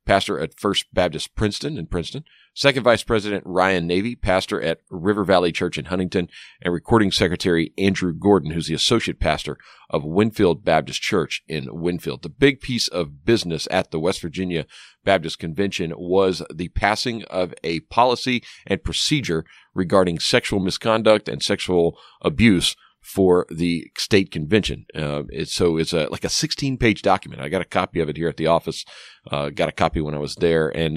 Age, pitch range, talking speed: 40-59, 85-105 Hz, 180 wpm